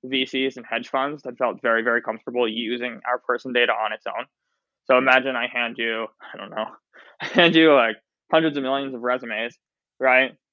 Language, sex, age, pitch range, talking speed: English, male, 20-39, 120-140 Hz, 195 wpm